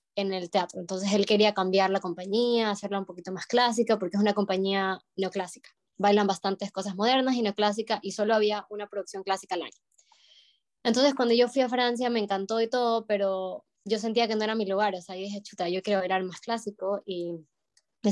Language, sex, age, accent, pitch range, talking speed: Spanish, female, 20-39, Argentinian, 195-225 Hz, 205 wpm